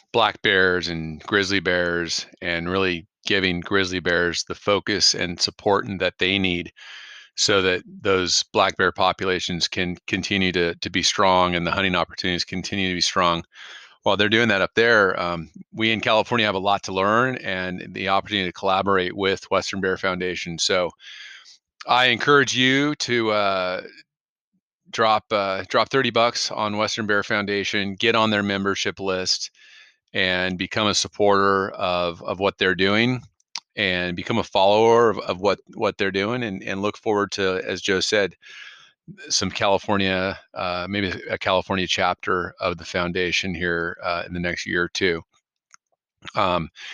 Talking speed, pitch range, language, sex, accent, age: 160 wpm, 90-105 Hz, English, male, American, 40-59